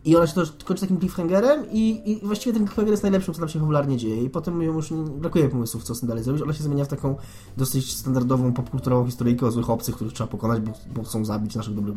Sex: male